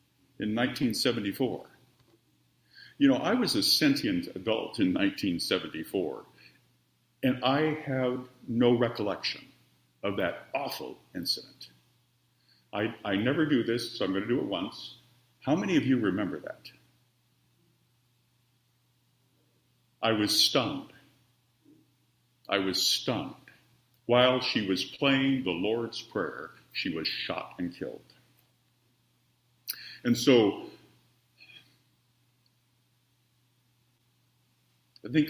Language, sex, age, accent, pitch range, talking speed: English, male, 50-69, American, 100-125 Hz, 100 wpm